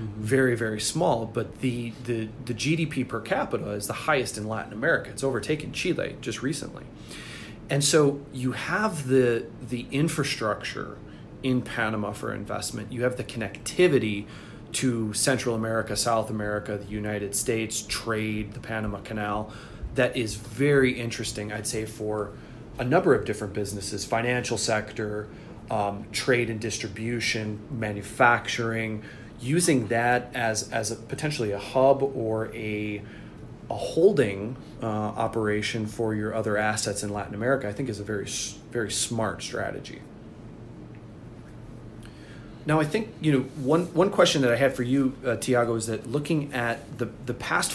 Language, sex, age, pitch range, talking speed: English, male, 30-49, 105-130 Hz, 150 wpm